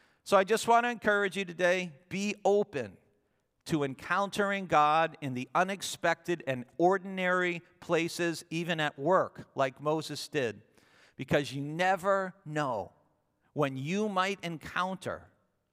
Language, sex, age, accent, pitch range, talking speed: English, male, 50-69, American, 135-175 Hz, 125 wpm